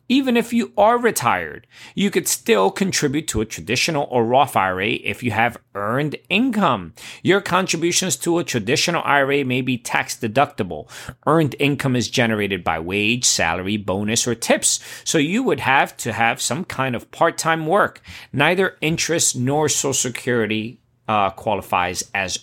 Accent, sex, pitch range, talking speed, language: American, male, 115-170 Hz, 155 wpm, English